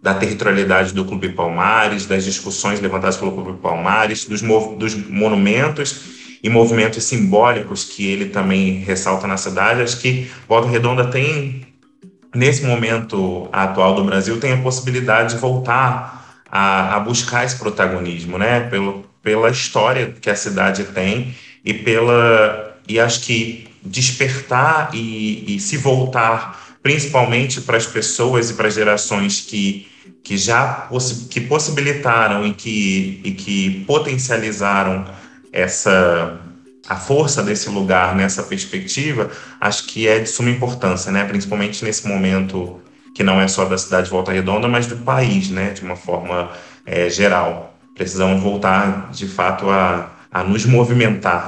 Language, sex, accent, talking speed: Portuguese, male, Brazilian, 140 wpm